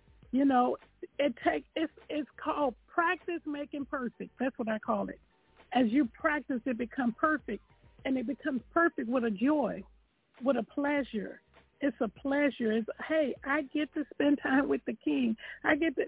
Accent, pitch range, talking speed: American, 230-295 Hz, 175 wpm